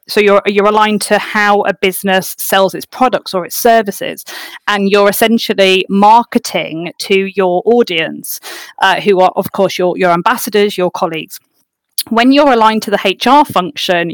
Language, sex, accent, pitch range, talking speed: English, female, British, 190-230 Hz, 160 wpm